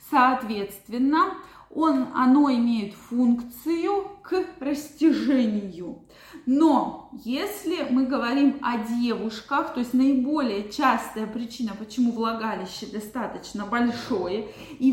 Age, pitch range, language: 20-39, 225-280 Hz, Russian